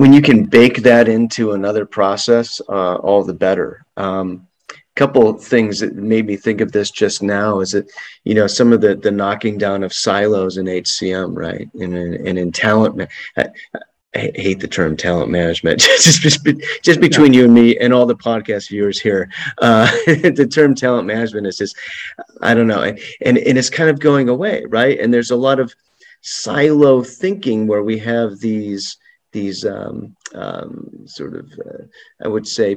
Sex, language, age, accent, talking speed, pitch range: male, English, 30-49, American, 190 wpm, 95-125 Hz